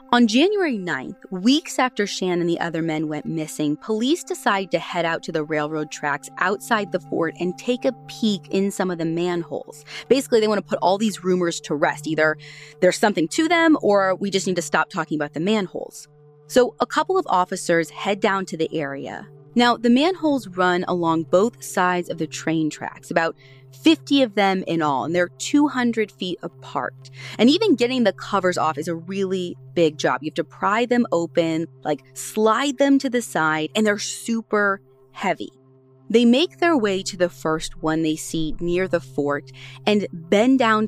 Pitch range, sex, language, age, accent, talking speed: 155-225 Hz, female, English, 20-39, American, 195 wpm